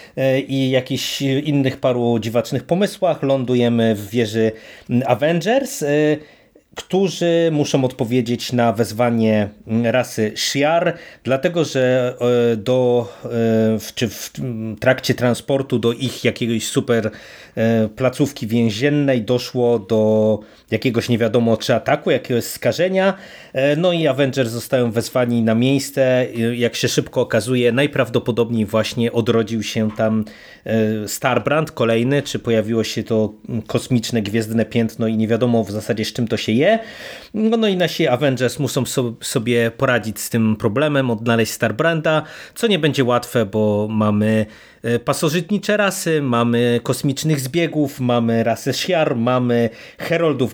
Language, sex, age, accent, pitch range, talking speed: Polish, male, 30-49, native, 115-145 Hz, 120 wpm